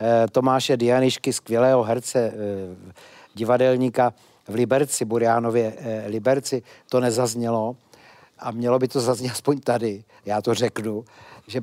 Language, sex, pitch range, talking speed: Czech, male, 120-150 Hz, 115 wpm